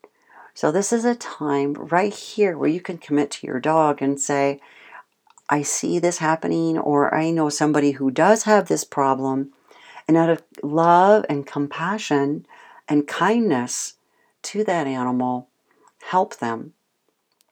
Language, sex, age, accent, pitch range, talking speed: English, female, 50-69, American, 140-175 Hz, 145 wpm